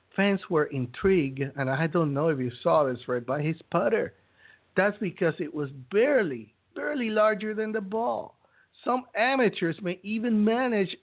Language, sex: English, male